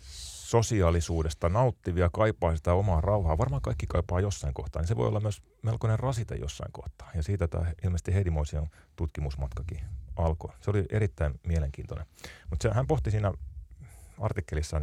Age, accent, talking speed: 30-49, native, 150 wpm